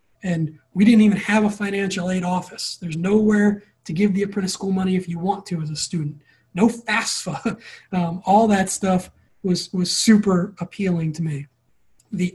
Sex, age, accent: male, 20-39, American